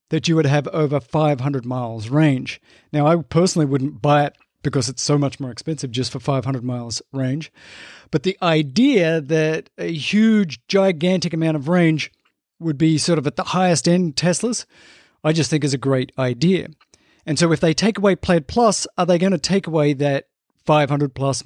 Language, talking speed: English, 190 wpm